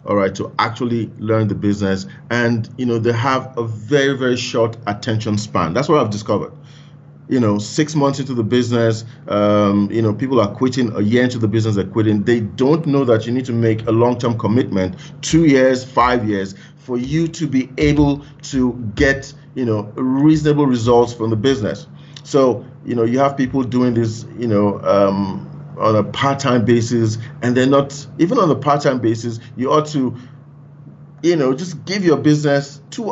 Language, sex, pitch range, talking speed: English, male, 115-145 Hz, 185 wpm